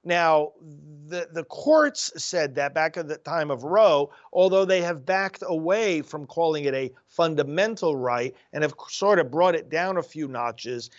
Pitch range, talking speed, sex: 145-190 Hz, 180 wpm, male